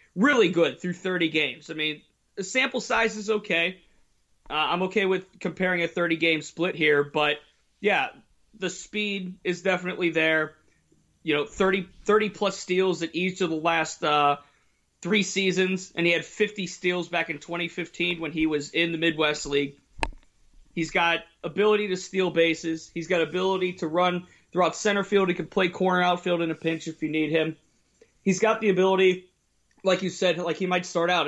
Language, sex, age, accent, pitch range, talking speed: English, male, 30-49, American, 160-185 Hz, 180 wpm